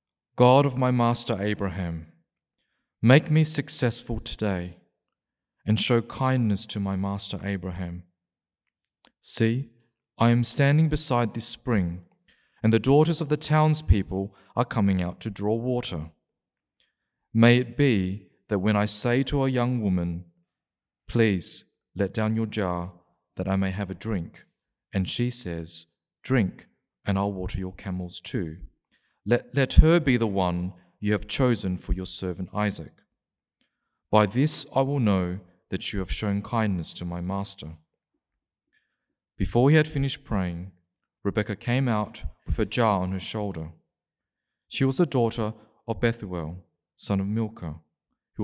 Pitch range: 90-120 Hz